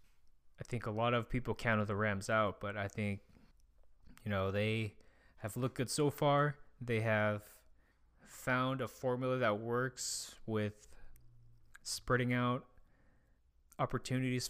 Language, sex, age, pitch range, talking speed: English, male, 20-39, 105-125 Hz, 135 wpm